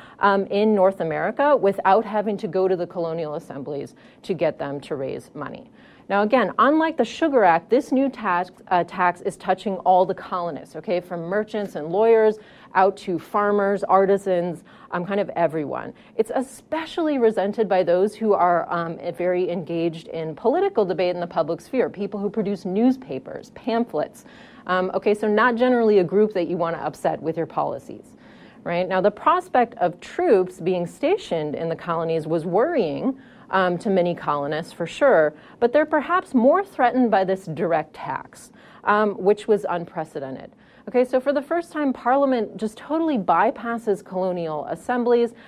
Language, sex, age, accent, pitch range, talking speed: English, female, 30-49, American, 175-240 Hz, 170 wpm